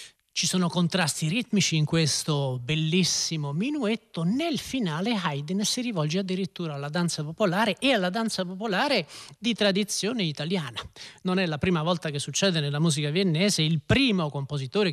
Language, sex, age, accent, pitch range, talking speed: Italian, male, 30-49, native, 145-195 Hz, 150 wpm